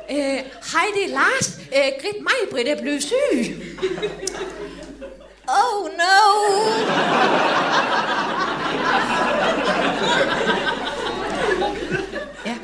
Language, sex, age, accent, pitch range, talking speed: Danish, female, 30-49, native, 255-380 Hz, 75 wpm